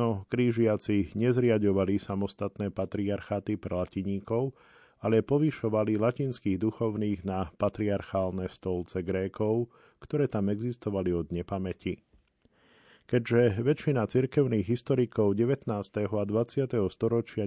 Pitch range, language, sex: 100-120 Hz, Slovak, male